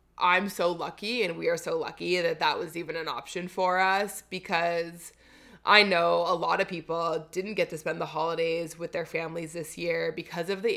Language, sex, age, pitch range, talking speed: English, female, 20-39, 165-210 Hz, 205 wpm